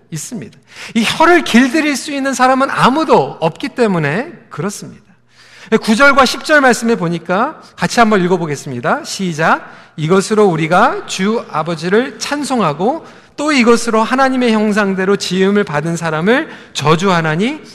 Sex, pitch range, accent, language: male, 180-260 Hz, native, Korean